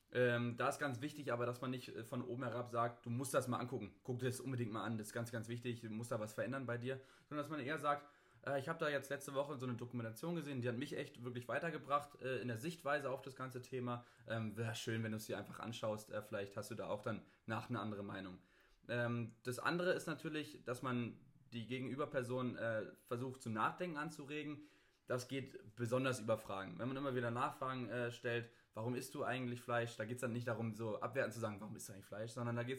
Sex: male